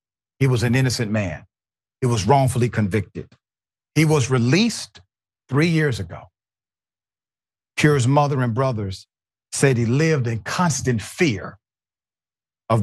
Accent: American